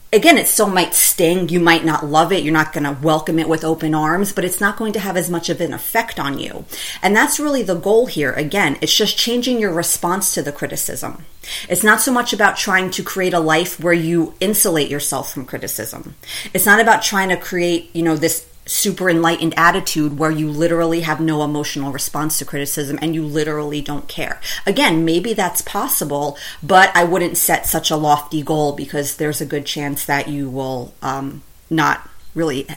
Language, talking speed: English, 205 wpm